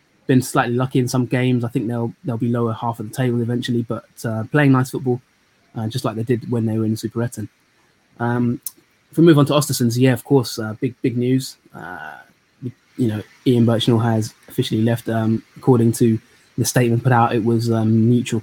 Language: English